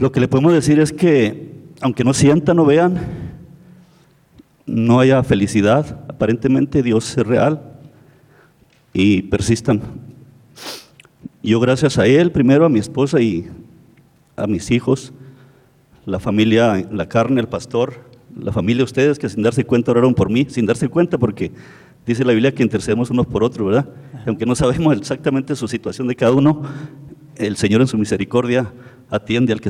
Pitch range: 110-135 Hz